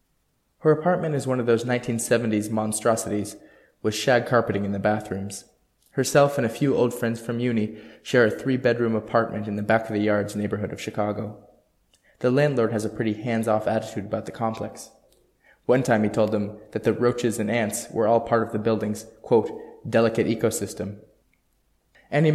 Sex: male